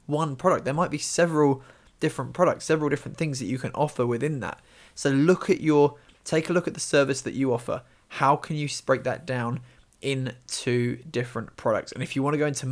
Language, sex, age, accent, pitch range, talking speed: English, male, 20-39, British, 125-145 Hz, 215 wpm